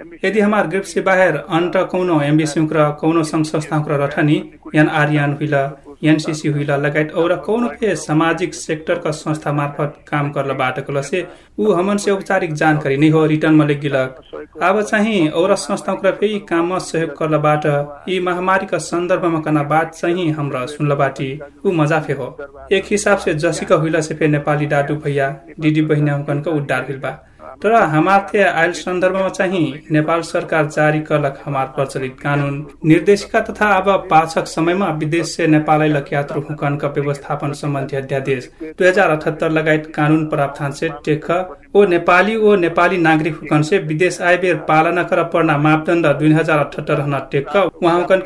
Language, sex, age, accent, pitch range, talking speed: English, male, 30-49, Indian, 150-180 Hz, 120 wpm